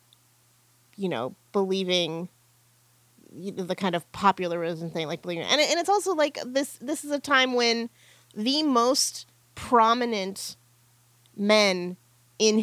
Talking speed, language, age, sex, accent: 120 wpm, English, 30-49, female, American